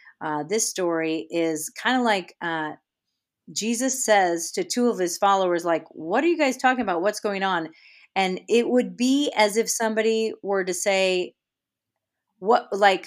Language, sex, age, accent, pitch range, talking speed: English, female, 40-59, American, 170-225 Hz, 160 wpm